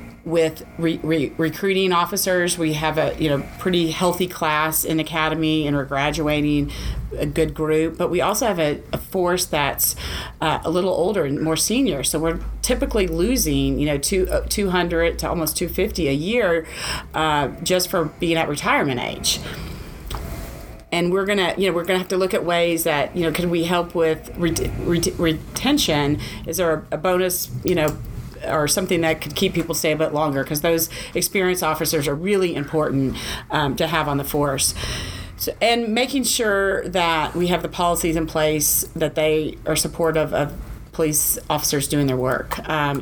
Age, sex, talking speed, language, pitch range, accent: 40-59, female, 180 wpm, English, 150-175 Hz, American